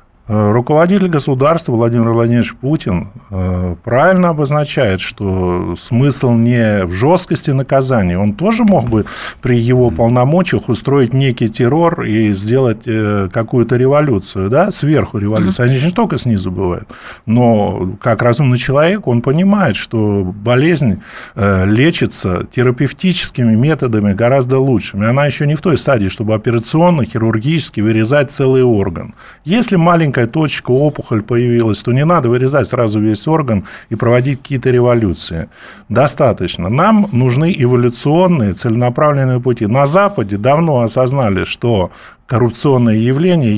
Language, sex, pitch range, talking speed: Russian, male, 110-145 Hz, 125 wpm